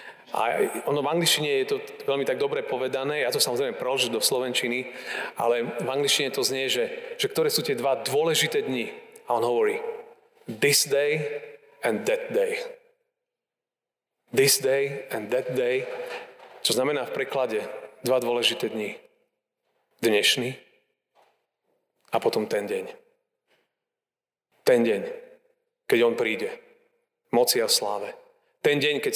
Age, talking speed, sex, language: 30-49, 135 wpm, male, Slovak